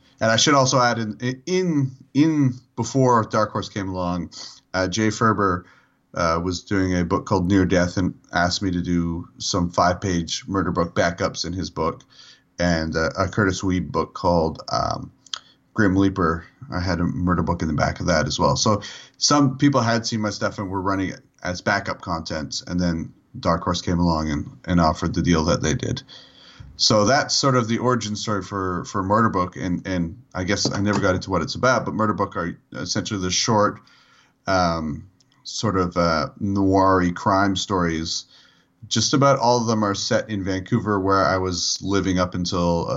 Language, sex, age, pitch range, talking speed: English, male, 30-49, 90-115 Hz, 195 wpm